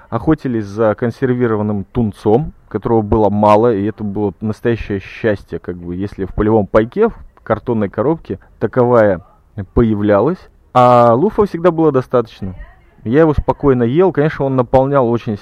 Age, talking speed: 20-39, 140 wpm